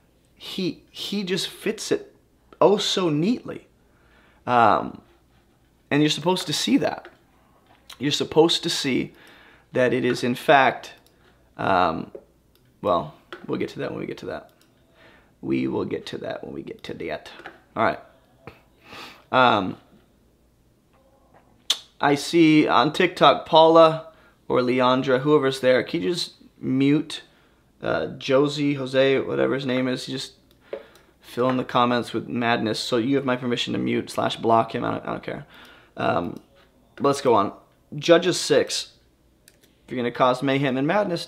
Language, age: English, 20-39